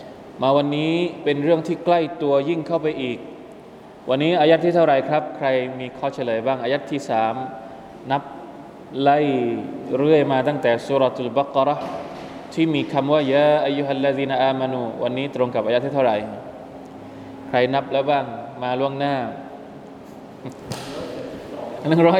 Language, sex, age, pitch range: Thai, male, 20-39, 125-150 Hz